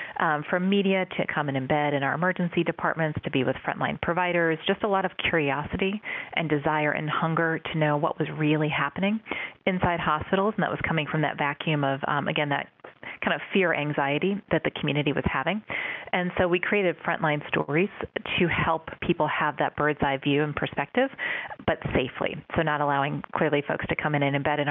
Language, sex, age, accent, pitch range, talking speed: English, female, 30-49, American, 145-175 Hz, 200 wpm